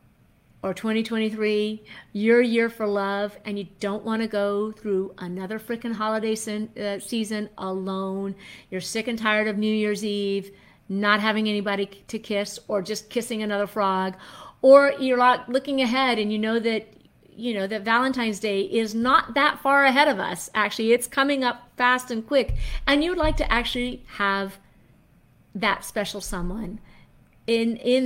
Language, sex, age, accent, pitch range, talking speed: English, female, 50-69, American, 195-235 Hz, 160 wpm